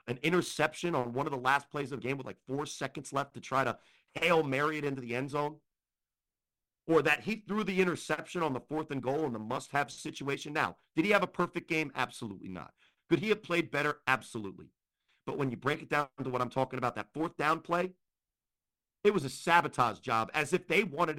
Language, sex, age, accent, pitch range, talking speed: English, male, 50-69, American, 135-180 Hz, 225 wpm